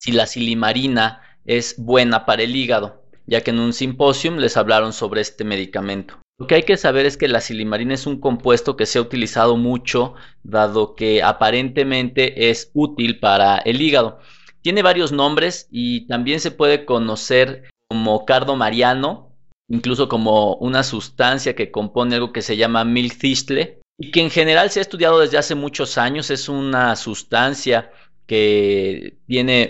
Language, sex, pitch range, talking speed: Spanish, male, 110-135 Hz, 160 wpm